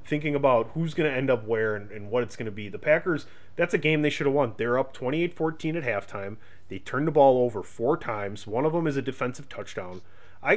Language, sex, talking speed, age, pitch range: English, male, 255 wpm, 30-49, 105-135 Hz